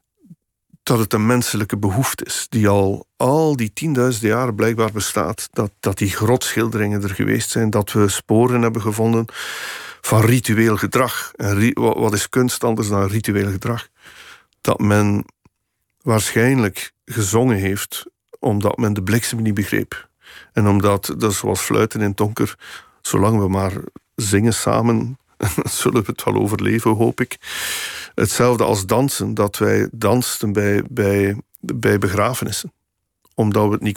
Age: 50-69